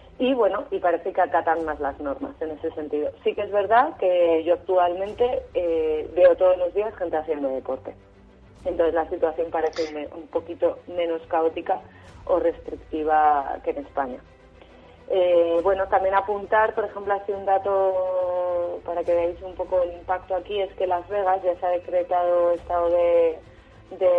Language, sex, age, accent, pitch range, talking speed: Spanish, female, 30-49, Spanish, 155-195 Hz, 170 wpm